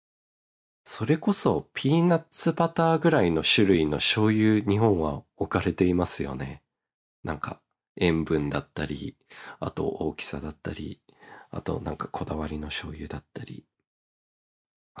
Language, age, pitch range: Japanese, 40-59, 75-120 Hz